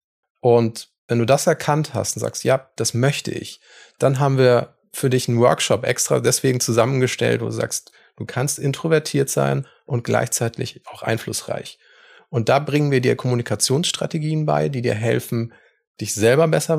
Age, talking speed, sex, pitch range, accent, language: 30-49, 165 wpm, male, 125-165 Hz, German, German